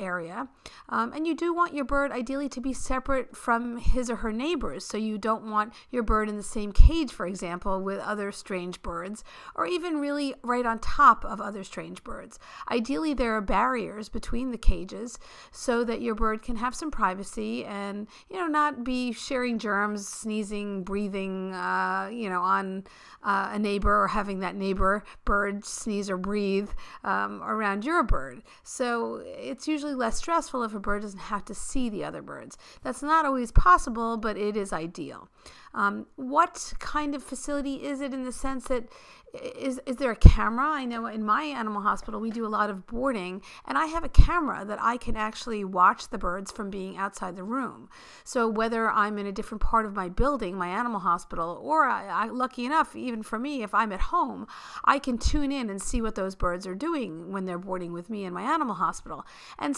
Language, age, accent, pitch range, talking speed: English, 50-69, American, 200-260 Hz, 200 wpm